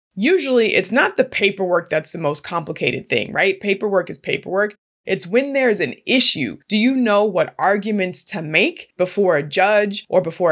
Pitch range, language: 180-220 Hz, English